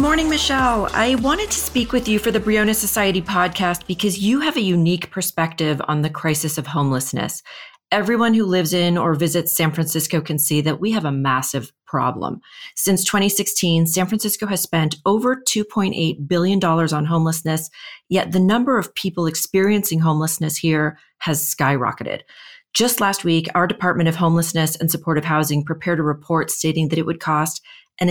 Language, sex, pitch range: English, female, 155-200 Hz